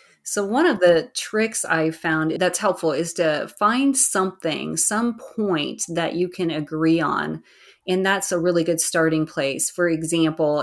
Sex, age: female, 30-49